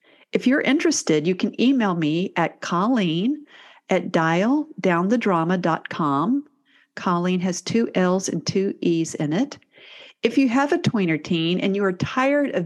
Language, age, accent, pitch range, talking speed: English, 50-69, American, 175-235 Hz, 145 wpm